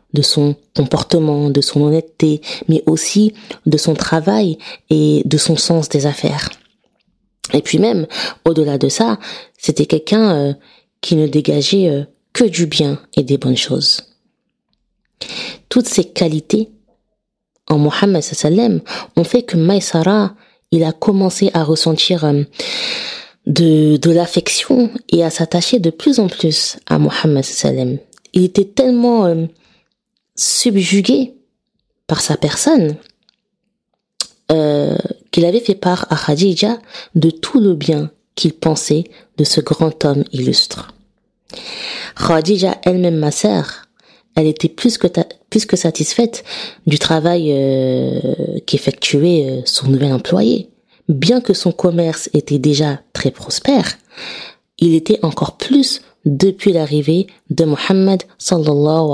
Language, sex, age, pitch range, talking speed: French, female, 20-39, 150-210 Hz, 130 wpm